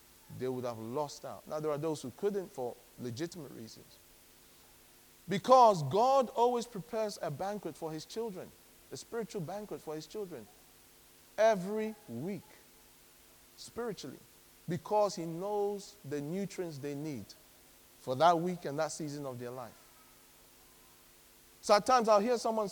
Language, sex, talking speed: English, male, 145 wpm